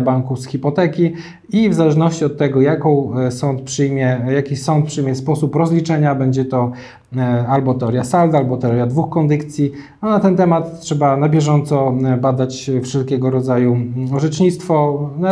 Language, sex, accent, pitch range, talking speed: Polish, male, native, 130-160 Hz, 145 wpm